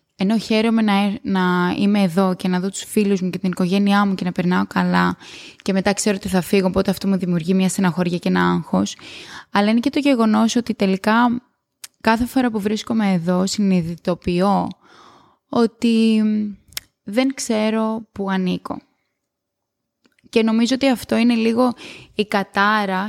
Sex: female